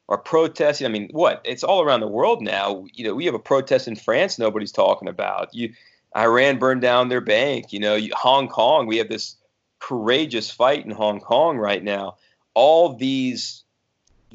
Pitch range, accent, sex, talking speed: 105-125 Hz, American, male, 190 wpm